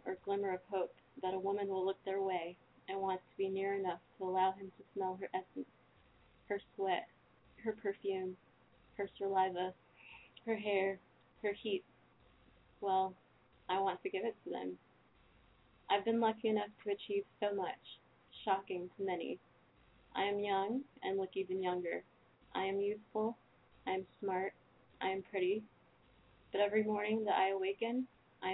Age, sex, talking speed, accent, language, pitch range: 20-39, female, 160 wpm, American, English, 185-210 Hz